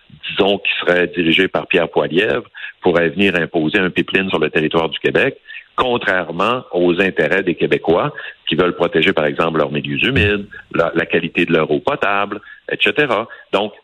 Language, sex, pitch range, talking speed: French, male, 80-105 Hz, 170 wpm